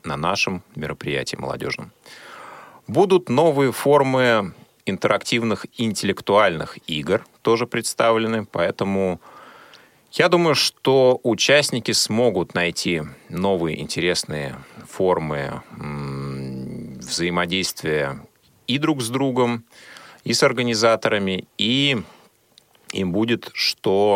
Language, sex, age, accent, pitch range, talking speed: Russian, male, 30-49, native, 85-120 Hz, 85 wpm